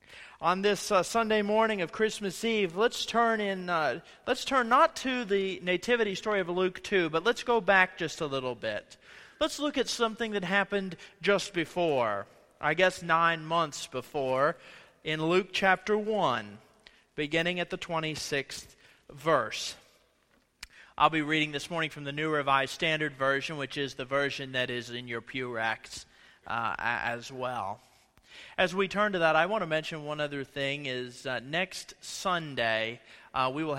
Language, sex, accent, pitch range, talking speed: English, male, American, 135-190 Hz, 170 wpm